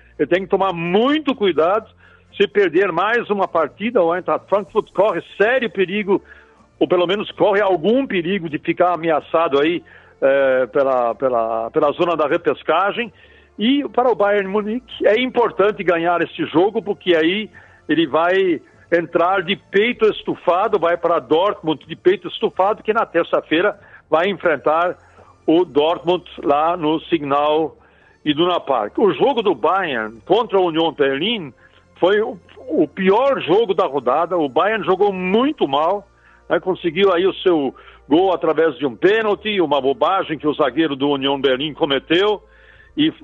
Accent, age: Brazilian, 60-79